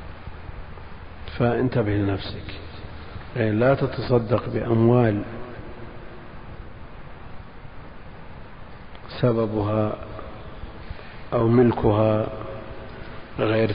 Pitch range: 110-125 Hz